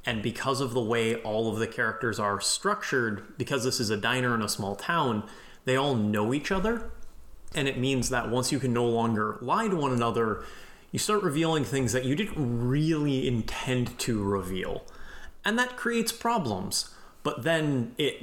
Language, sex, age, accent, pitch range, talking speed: English, male, 30-49, American, 110-135 Hz, 185 wpm